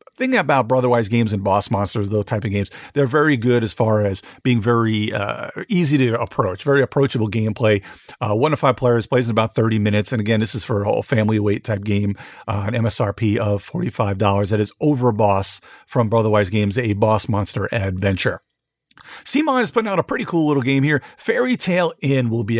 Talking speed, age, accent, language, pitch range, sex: 205 wpm, 40-59, American, English, 110-145 Hz, male